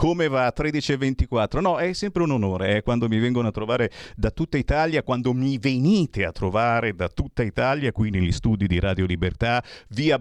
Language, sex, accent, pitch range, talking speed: Italian, male, native, 105-160 Hz, 205 wpm